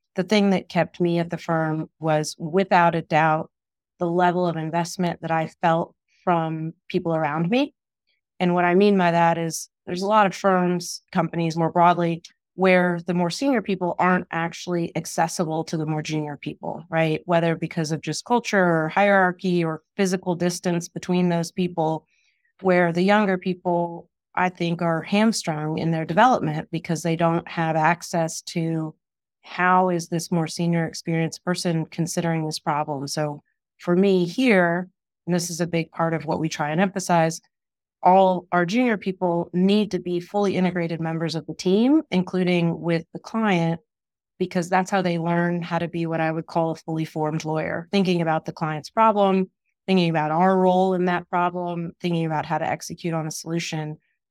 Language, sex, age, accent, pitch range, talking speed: English, female, 30-49, American, 165-180 Hz, 180 wpm